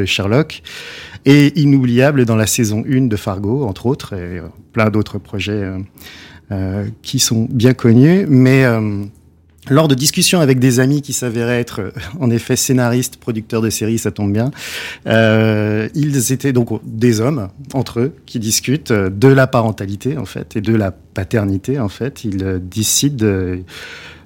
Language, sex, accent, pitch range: French, male, French, 105-135 Hz